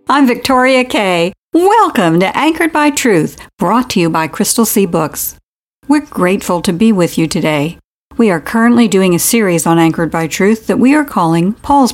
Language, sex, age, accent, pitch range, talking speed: English, female, 60-79, American, 170-235 Hz, 185 wpm